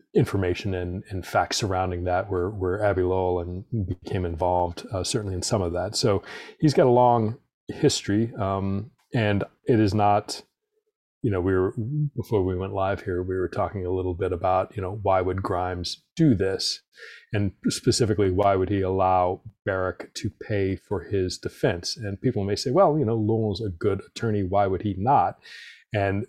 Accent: American